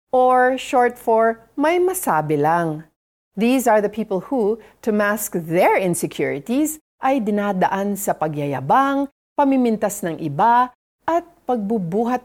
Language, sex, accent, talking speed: Filipino, female, native, 120 wpm